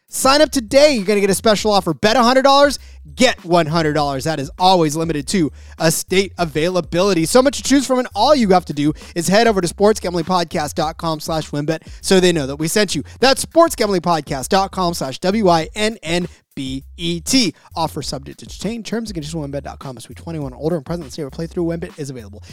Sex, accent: male, American